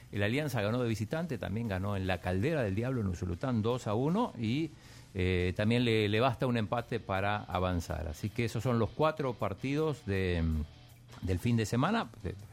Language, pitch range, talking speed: Spanish, 100-125 Hz, 185 wpm